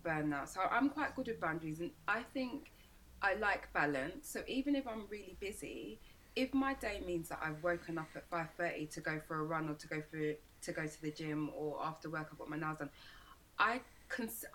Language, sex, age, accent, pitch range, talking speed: English, female, 20-39, British, 150-180 Hz, 225 wpm